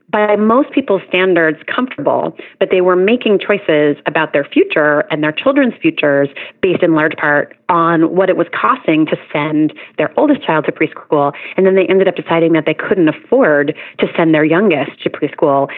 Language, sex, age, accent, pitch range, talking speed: English, female, 30-49, American, 155-190 Hz, 185 wpm